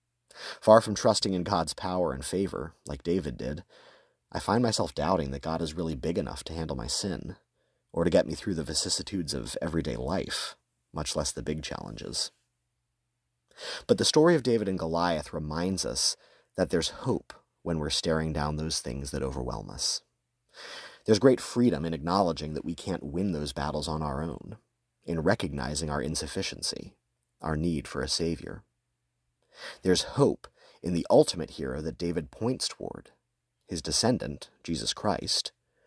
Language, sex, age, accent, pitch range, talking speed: English, male, 30-49, American, 70-95 Hz, 165 wpm